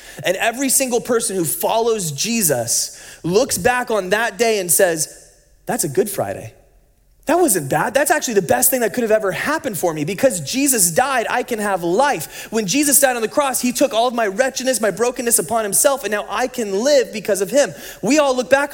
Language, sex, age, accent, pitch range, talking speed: English, male, 30-49, American, 150-225 Hz, 220 wpm